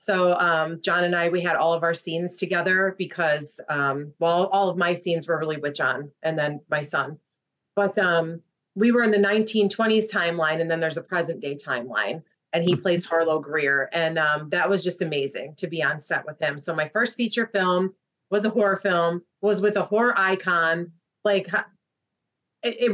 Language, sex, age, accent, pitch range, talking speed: English, female, 30-49, American, 170-210 Hz, 195 wpm